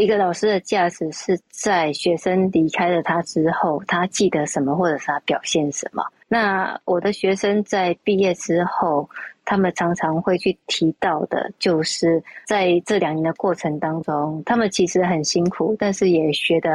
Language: Chinese